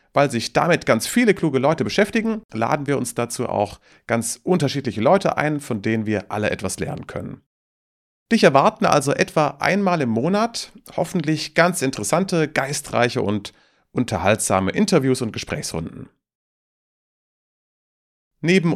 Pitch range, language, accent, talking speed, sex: 105-165 Hz, German, German, 130 wpm, male